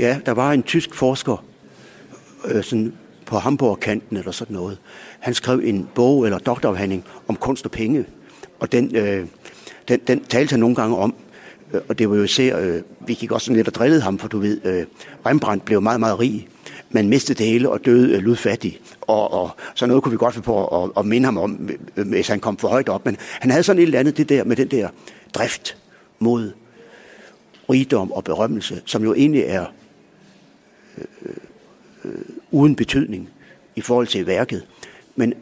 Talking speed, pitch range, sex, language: 195 wpm, 105-130 Hz, male, Danish